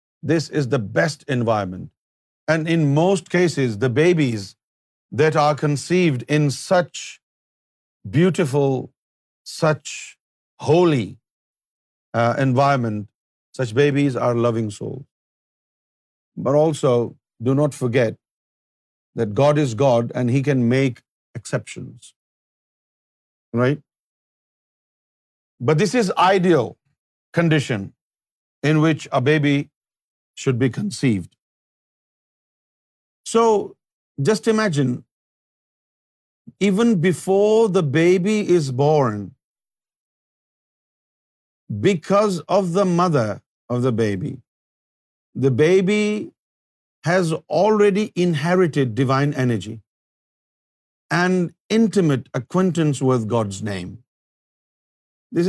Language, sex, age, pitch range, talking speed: Urdu, male, 50-69, 120-175 Hz, 90 wpm